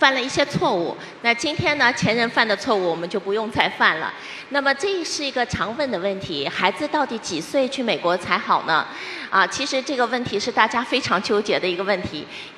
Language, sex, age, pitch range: Chinese, female, 30-49, 195-270 Hz